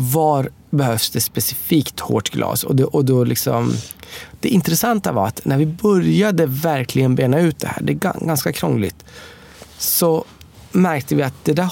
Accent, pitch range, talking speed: Swedish, 120-155 Hz, 170 wpm